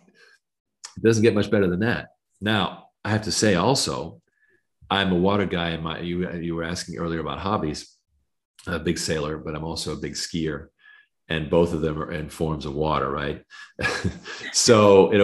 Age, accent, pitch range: 40-59, American, 80-95 Hz